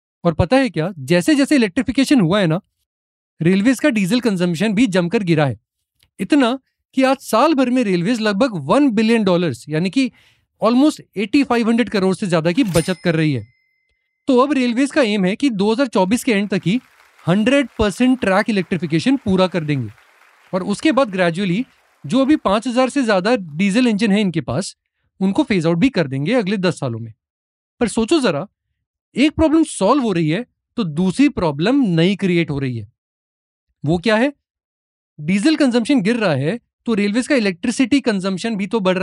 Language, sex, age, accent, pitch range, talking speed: Hindi, male, 30-49, native, 170-255 Hz, 175 wpm